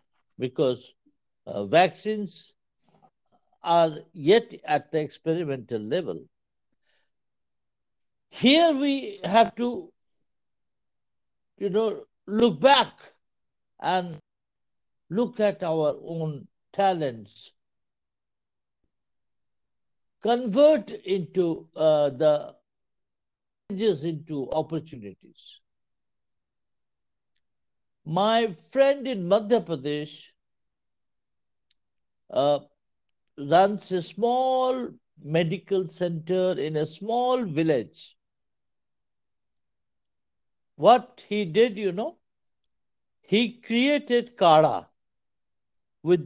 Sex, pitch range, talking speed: male, 145-220 Hz, 70 wpm